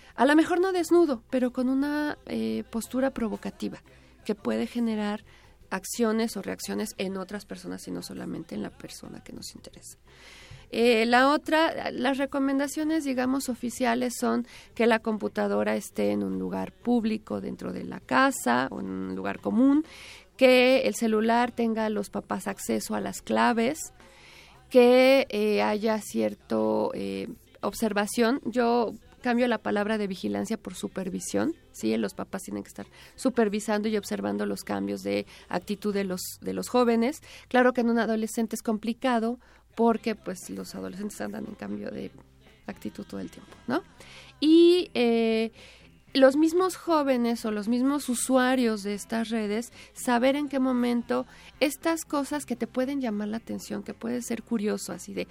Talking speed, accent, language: 160 wpm, Mexican, Spanish